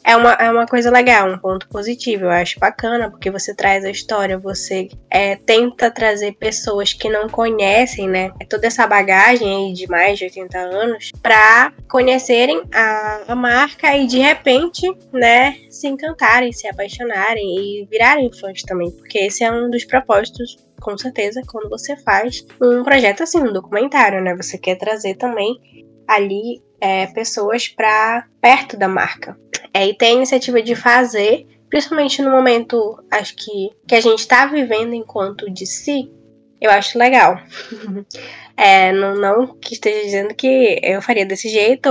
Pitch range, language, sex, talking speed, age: 195-245 Hz, Portuguese, female, 165 wpm, 10-29